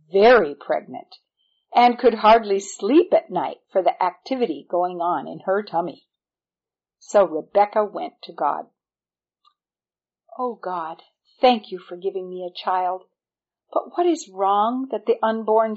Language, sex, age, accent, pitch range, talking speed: English, female, 50-69, American, 180-255 Hz, 140 wpm